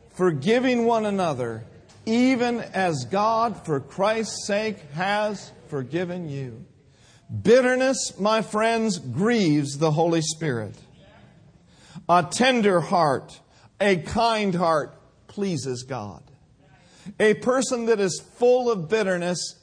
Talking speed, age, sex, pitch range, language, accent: 105 wpm, 50-69, male, 165-230 Hz, English, American